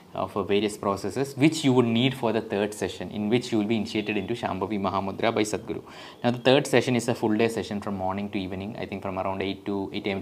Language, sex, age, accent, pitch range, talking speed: English, male, 20-39, Indian, 100-120 Hz, 255 wpm